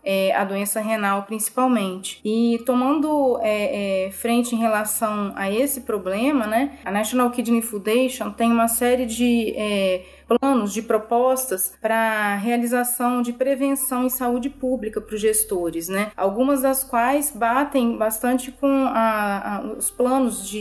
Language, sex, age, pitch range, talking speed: Portuguese, female, 30-49, 205-245 Hz, 120 wpm